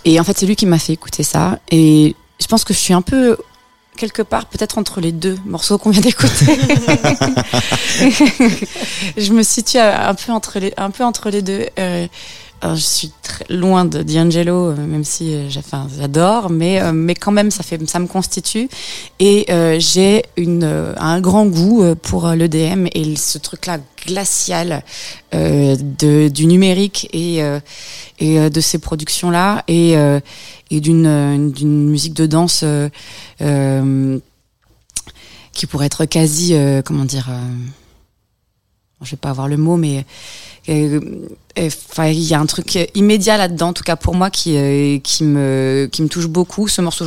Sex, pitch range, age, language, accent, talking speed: female, 145-180 Hz, 30-49, French, French, 155 wpm